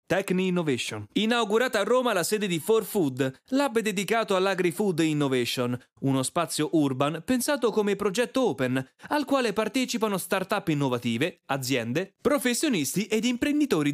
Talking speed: 130 wpm